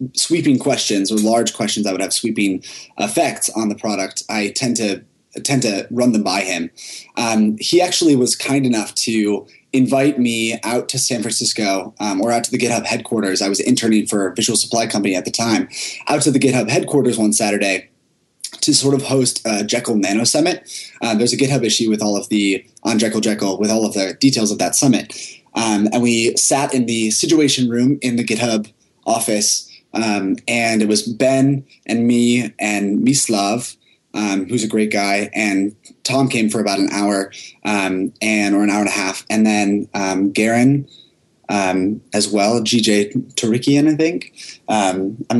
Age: 20-39